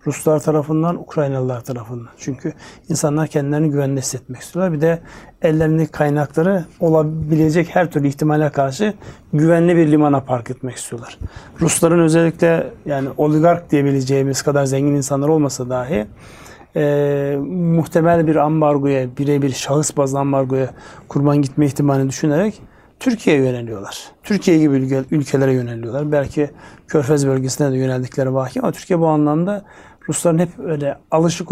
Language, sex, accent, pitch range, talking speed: Turkish, male, native, 140-160 Hz, 130 wpm